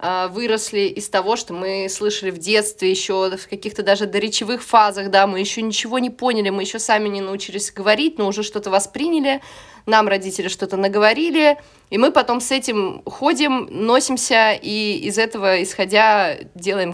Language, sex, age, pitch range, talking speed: Russian, female, 20-39, 185-240 Hz, 165 wpm